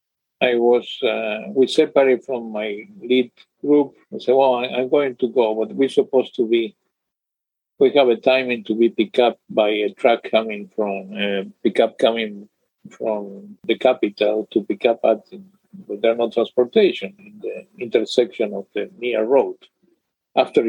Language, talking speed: English, 160 wpm